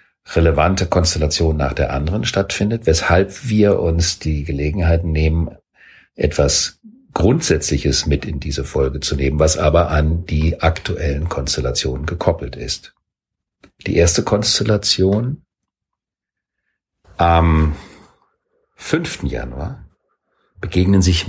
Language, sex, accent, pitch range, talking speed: German, male, German, 75-100 Hz, 100 wpm